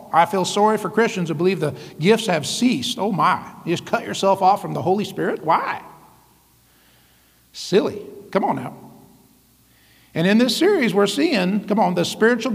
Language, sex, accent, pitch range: English, male, American, 170-210 Hz